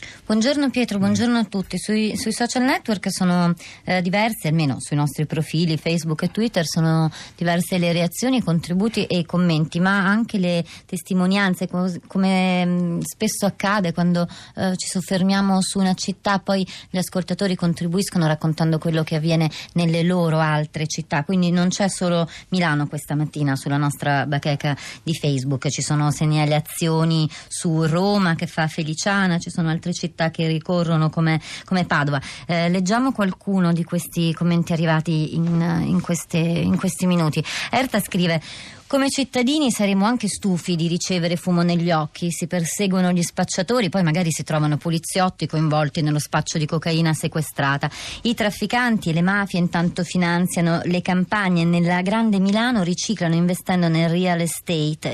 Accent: native